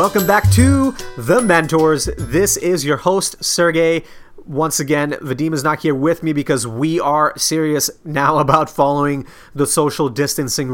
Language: English